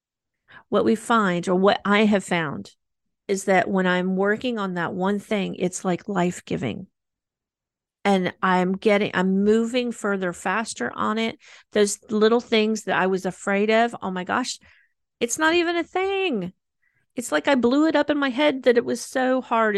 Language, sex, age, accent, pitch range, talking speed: English, female, 40-59, American, 195-235 Hz, 180 wpm